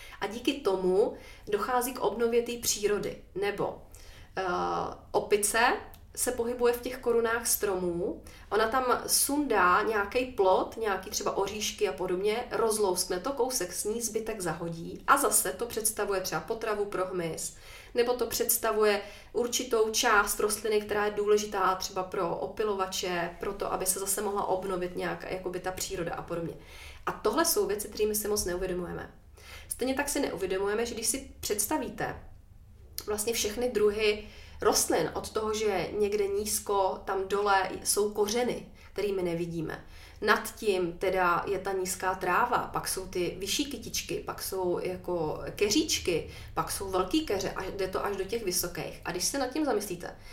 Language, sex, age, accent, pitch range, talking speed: Czech, female, 30-49, native, 185-235 Hz, 155 wpm